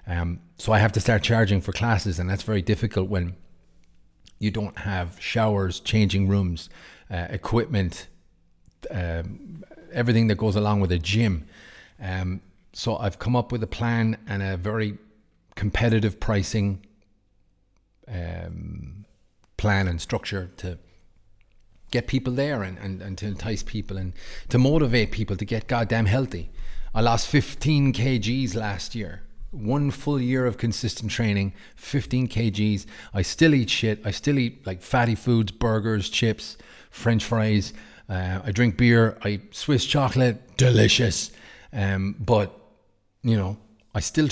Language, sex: English, male